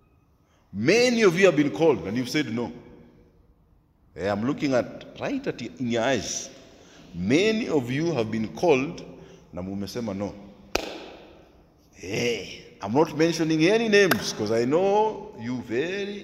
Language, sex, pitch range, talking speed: English, male, 135-205 Hz, 135 wpm